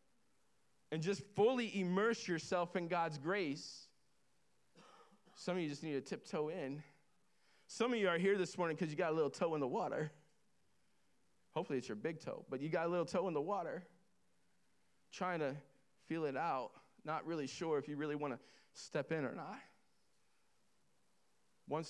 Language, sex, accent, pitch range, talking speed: English, male, American, 155-195 Hz, 175 wpm